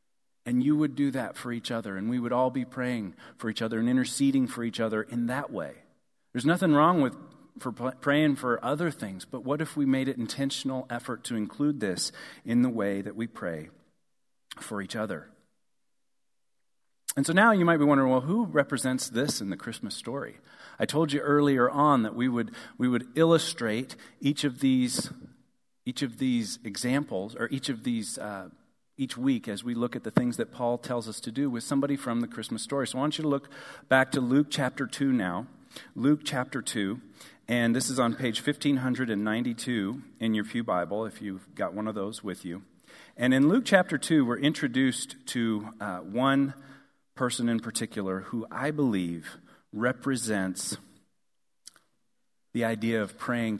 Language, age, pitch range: English, 40-59, 115-140 Hz